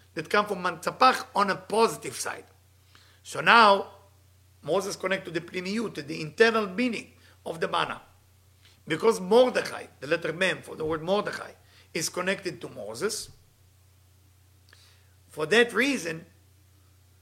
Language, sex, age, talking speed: English, male, 50-69, 130 wpm